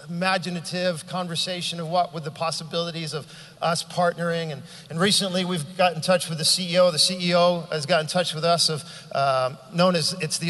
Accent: American